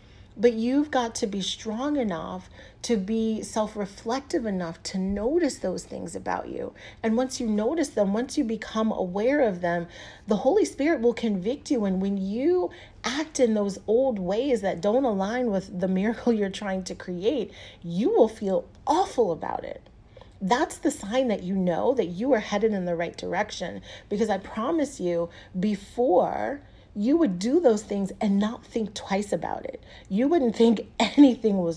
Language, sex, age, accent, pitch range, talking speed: English, female, 40-59, American, 185-245 Hz, 175 wpm